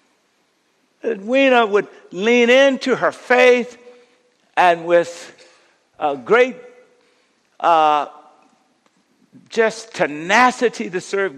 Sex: male